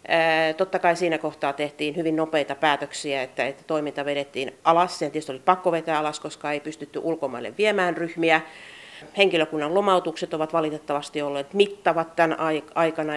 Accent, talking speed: native, 150 wpm